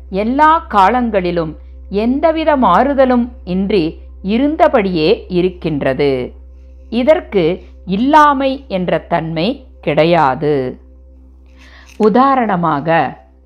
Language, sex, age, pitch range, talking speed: Tamil, female, 50-69, 155-265 Hz, 60 wpm